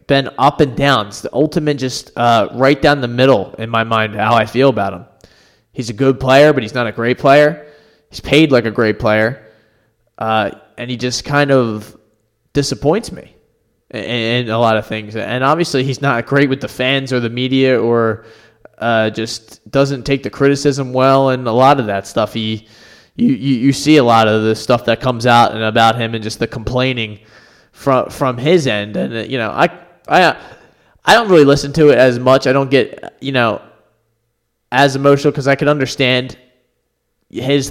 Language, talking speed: English, 195 wpm